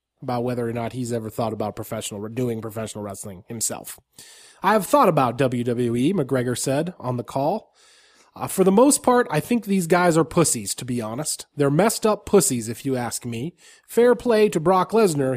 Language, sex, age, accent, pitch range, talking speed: English, male, 30-49, American, 130-175 Hz, 195 wpm